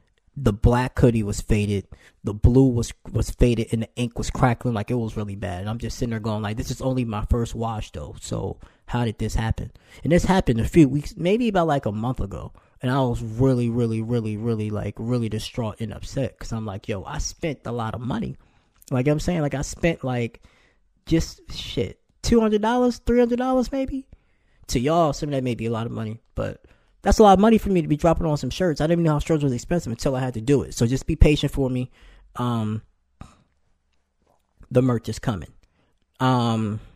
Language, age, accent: English, 20-39, American